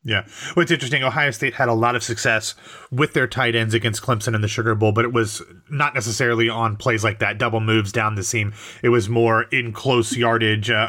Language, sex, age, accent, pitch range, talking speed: English, male, 30-49, American, 110-135 Hz, 225 wpm